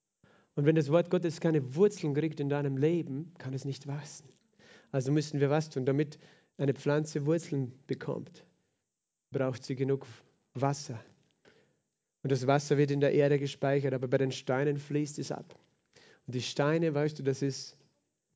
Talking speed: 165 wpm